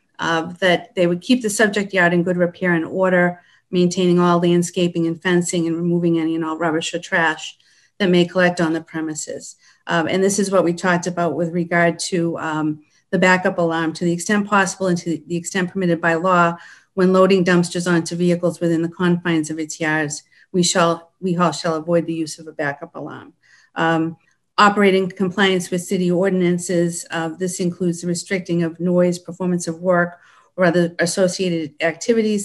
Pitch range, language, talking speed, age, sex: 170-185 Hz, English, 185 wpm, 50-69, female